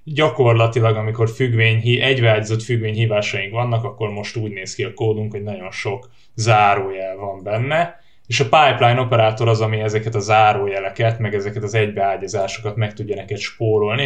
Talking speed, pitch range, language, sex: 155 wpm, 105-120 Hz, Hungarian, male